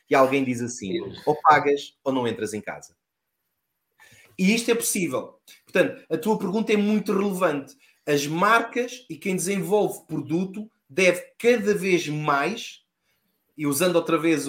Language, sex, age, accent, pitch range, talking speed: Portuguese, male, 20-39, Portuguese, 145-180 Hz, 150 wpm